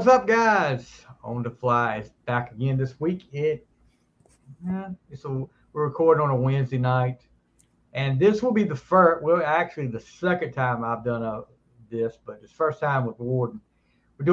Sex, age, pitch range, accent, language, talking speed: male, 50-69, 120-160 Hz, American, English, 180 wpm